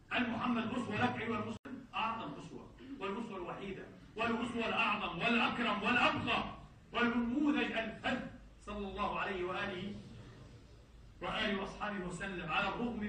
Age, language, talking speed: 50-69, Arabic, 110 wpm